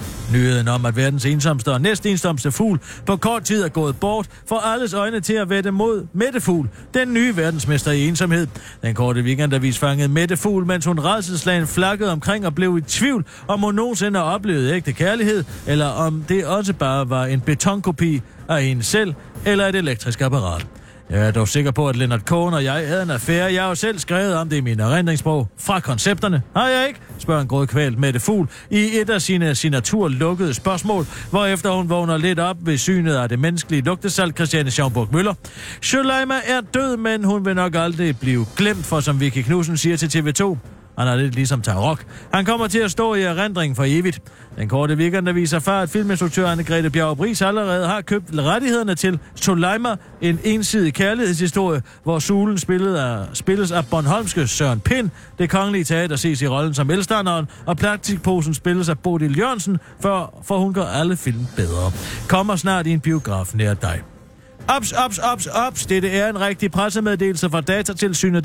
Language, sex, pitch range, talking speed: Danish, male, 140-200 Hz, 185 wpm